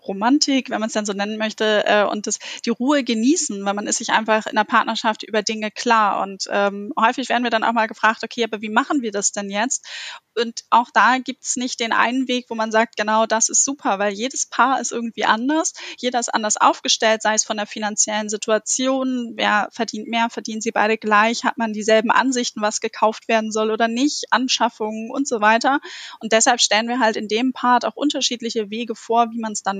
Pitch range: 220-255 Hz